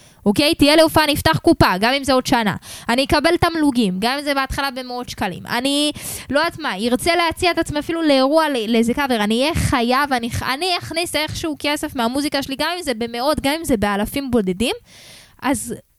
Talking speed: 200 wpm